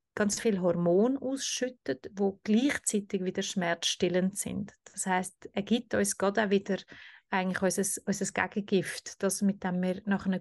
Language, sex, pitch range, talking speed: German, female, 190-220 Hz, 145 wpm